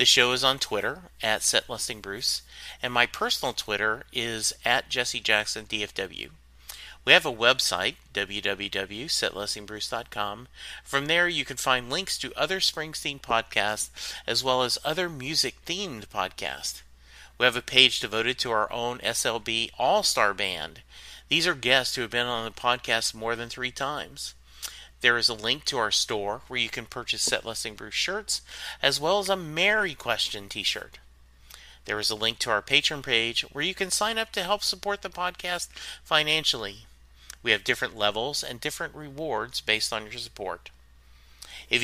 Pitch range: 105-140 Hz